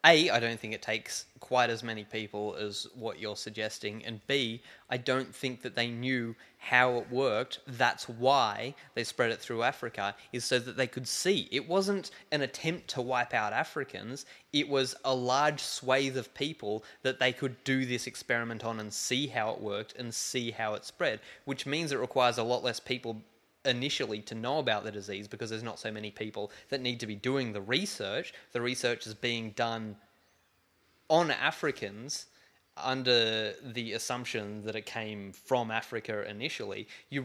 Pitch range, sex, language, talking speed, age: 110-130 Hz, male, English, 185 wpm, 20-39